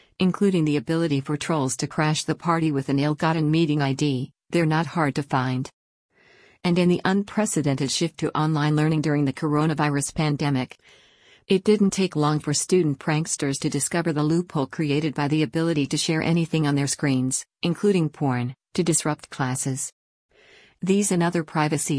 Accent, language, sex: American, English, female